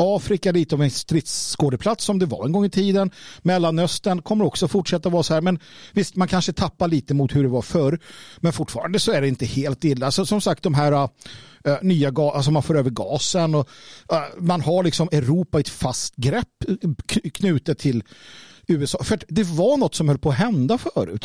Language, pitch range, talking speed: Swedish, 140-185 Hz, 210 wpm